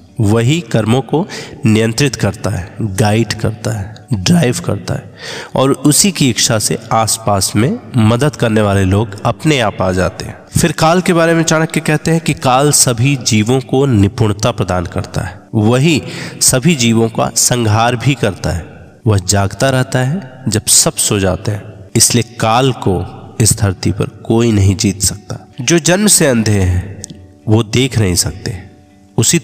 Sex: male